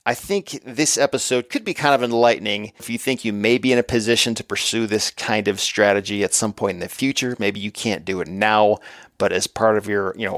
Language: English